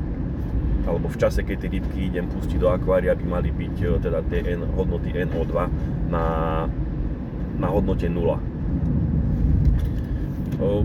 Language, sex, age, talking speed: Slovak, male, 30-49, 125 wpm